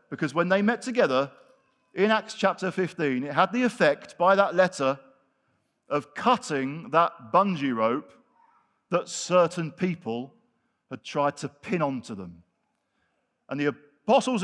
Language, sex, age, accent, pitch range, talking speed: English, male, 50-69, British, 160-230 Hz, 135 wpm